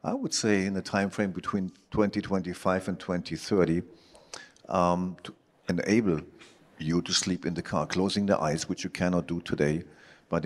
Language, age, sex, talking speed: English, 50-69, male, 160 wpm